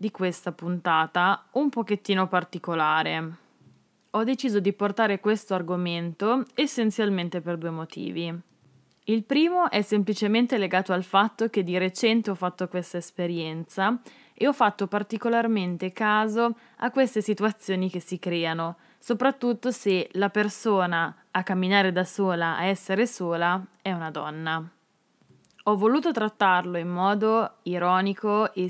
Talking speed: 130 wpm